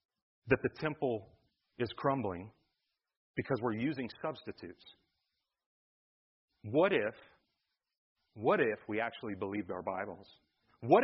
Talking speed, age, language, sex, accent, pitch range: 105 wpm, 40-59, English, male, American, 105-135 Hz